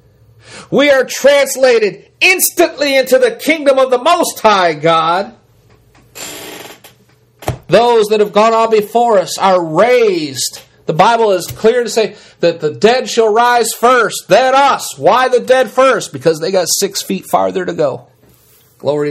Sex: male